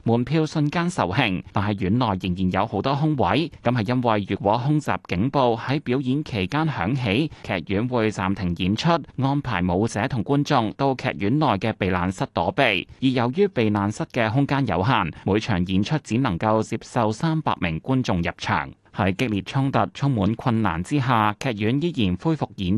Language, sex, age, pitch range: Chinese, male, 30-49, 100-140 Hz